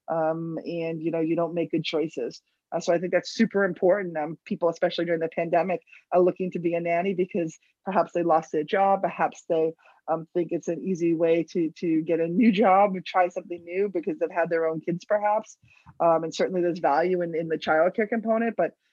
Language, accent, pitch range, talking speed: English, American, 165-185 Hz, 220 wpm